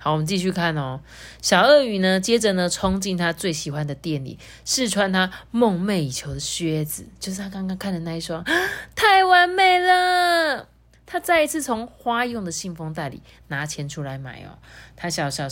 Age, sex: 30-49, female